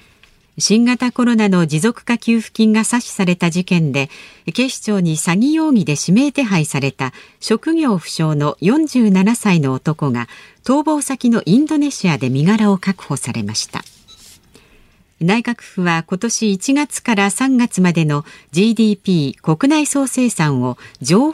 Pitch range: 155-235 Hz